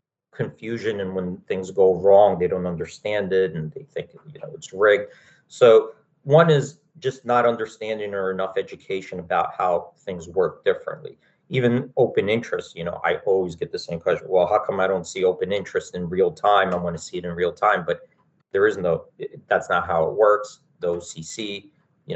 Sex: male